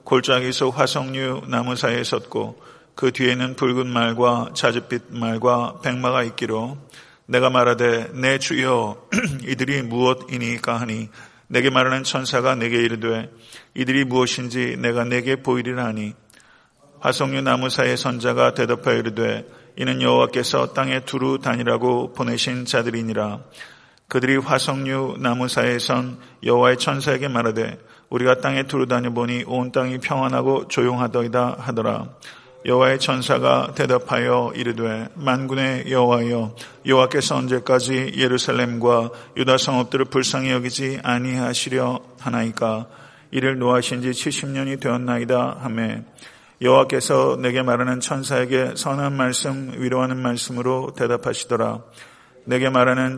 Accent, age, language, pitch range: native, 40-59, Korean, 120-130 Hz